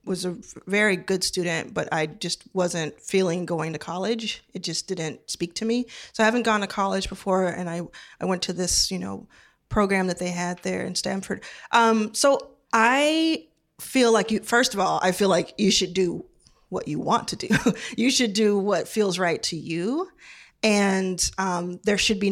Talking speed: 200 wpm